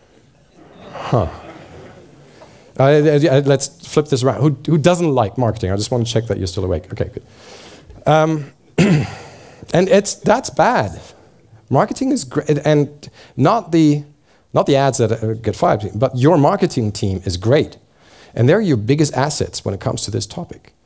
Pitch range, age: 110-150 Hz, 40-59